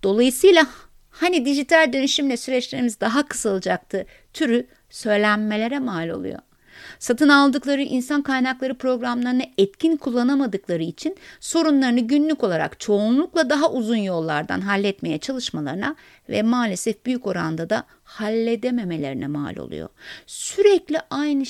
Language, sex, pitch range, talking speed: Turkish, female, 205-270 Hz, 105 wpm